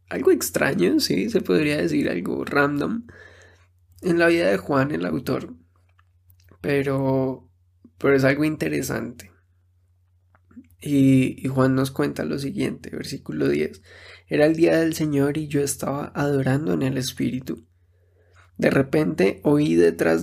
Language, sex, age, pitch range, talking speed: Spanish, male, 20-39, 90-145 Hz, 135 wpm